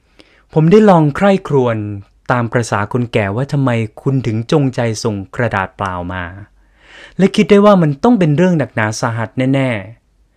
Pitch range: 115-165 Hz